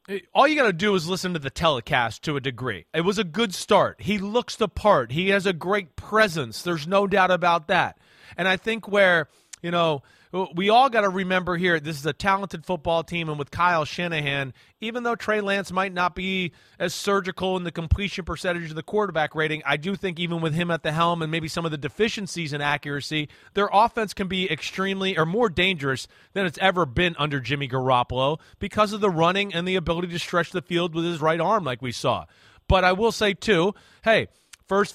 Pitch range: 165-205 Hz